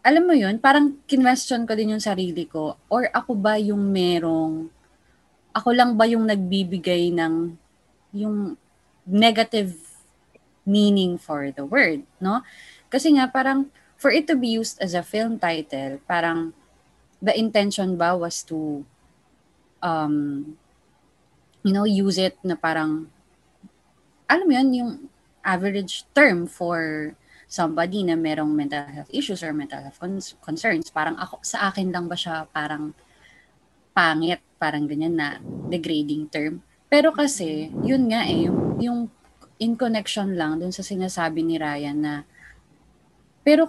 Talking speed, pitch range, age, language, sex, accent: 140 wpm, 160-230 Hz, 20-39, English, female, Filipino